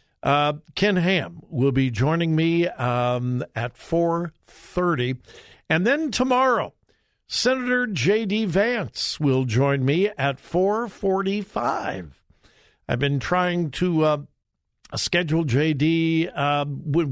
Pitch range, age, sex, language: 135-180 Hz, 60-79, male, English